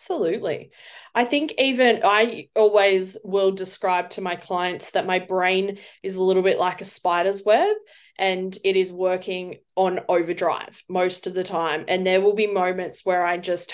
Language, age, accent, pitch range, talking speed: English, 20-39, Australian, 180-205 Hz, 175 wpm